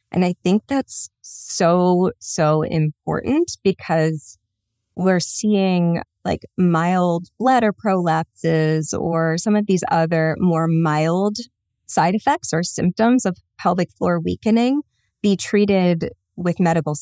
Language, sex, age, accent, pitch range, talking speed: English, female, 20-39, American, 160-195 Hz, 115 wpm